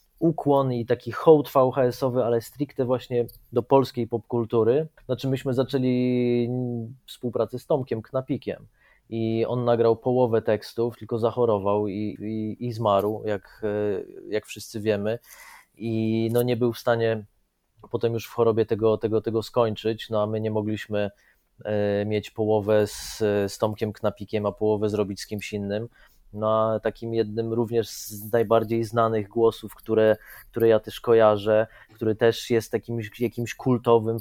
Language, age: Polish, 20-39